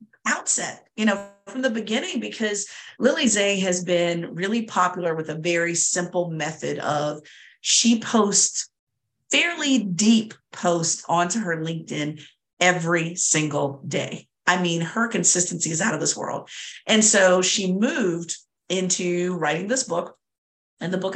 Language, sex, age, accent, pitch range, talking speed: English, female, 50-69, American, 165-205 Hz, 140 wpm